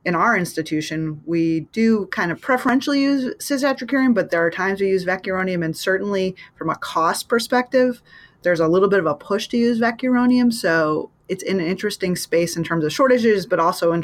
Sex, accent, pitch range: female, American, 155-195 Hz